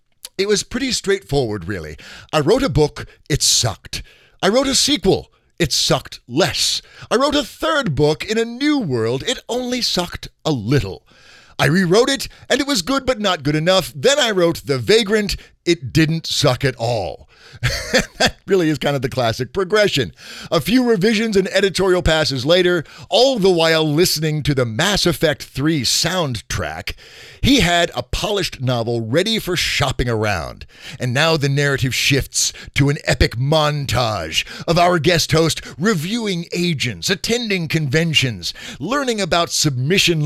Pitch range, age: 130-195 Hz, 50-69